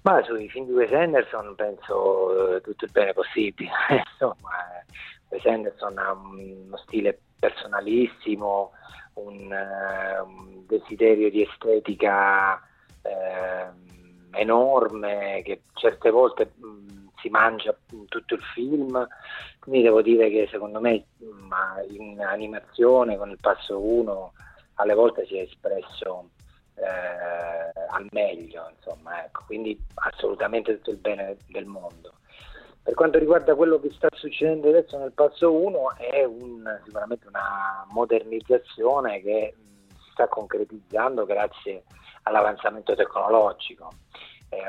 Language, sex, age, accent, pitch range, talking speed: Italian, male, 30-49, native, 100-150 Hz, 115 wpm